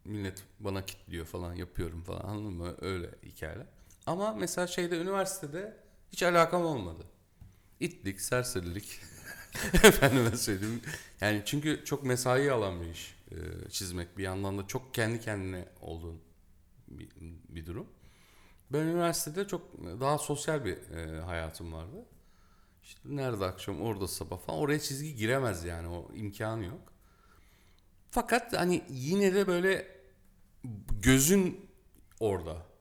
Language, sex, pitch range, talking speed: Turkish, male, 95-145 Hz, 125 wpm